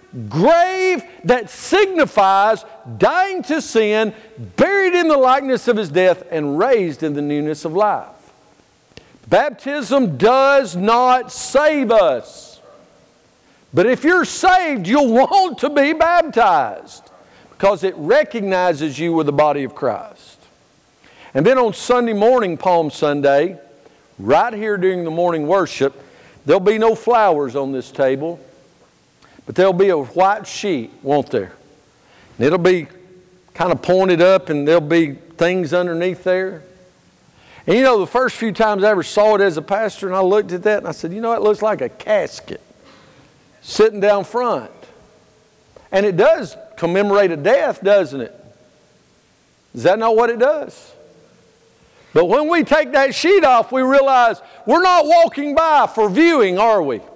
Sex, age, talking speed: male, 50-69, 155 wpm